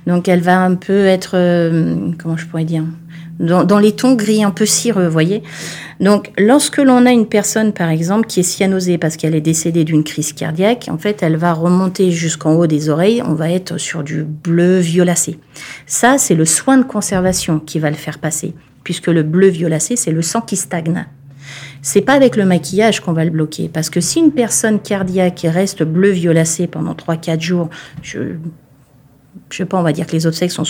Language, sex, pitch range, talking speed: French, female, 160-195 Hz, 205 wpm